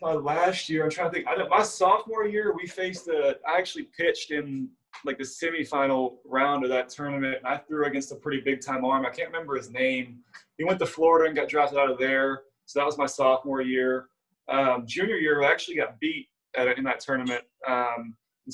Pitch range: 130-165 Hz